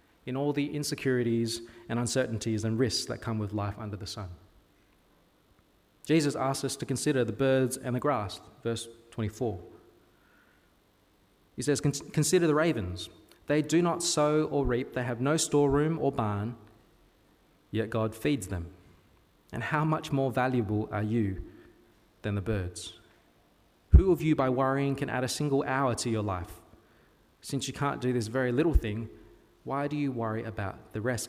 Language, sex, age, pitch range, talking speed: English, male, 20-39, 105-140 Hz, 165 wpm